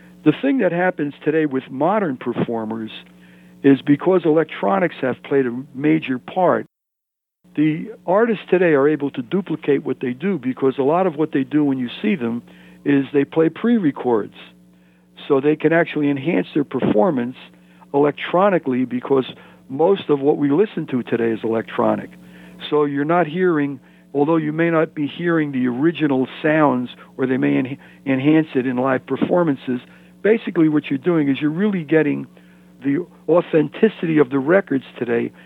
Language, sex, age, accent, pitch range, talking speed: English, male, 60-79, American, 125-155 Hz, 160 wpm